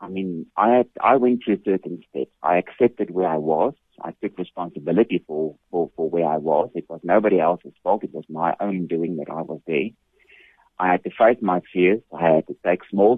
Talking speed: 220 wpm